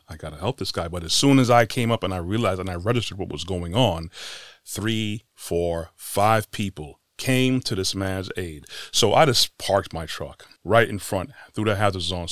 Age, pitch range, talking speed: 30-49, 90-115 Hz, 220 wpm